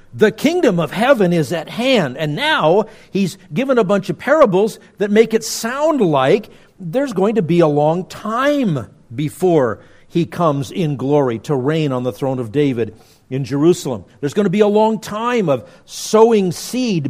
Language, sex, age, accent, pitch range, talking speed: English, male, 50-69, American, 140-205 Hz, 180 wpm